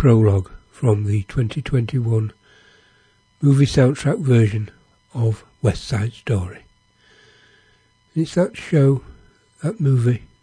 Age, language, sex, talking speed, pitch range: 60-79, English, male, 90 wpm, 110-135 Hz